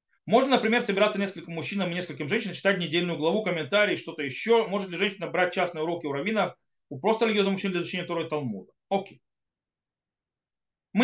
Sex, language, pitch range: male, Russian, 150-215 Hz